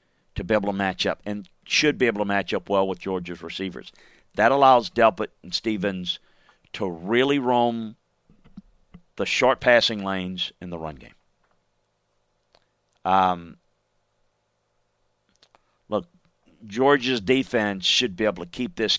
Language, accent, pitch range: English, American, 95-125 Hz